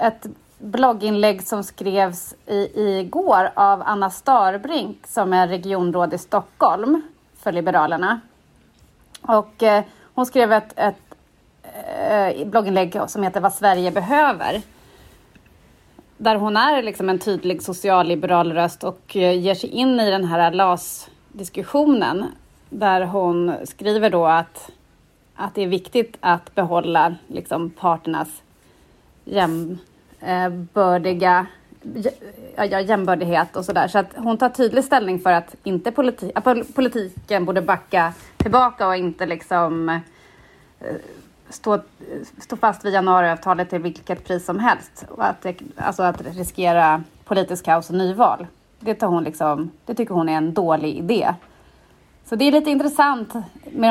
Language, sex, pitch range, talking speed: Swedish, female, 180-220 Hz, 135 wpm